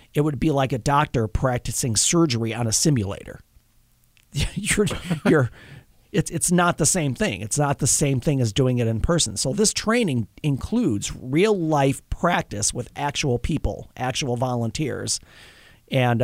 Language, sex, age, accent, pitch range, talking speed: English, male, 40-59, American, 115-155 Hz, 155 wpm